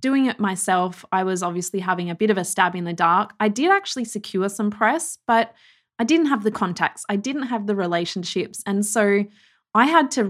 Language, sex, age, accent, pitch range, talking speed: English, female, 20-39, Australian, 190-230 Hz, 215 wpm